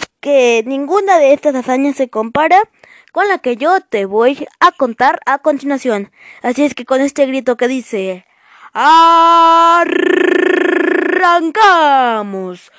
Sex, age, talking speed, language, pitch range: female, 20-39, 120 wpm, Spanish, 235-310 Hz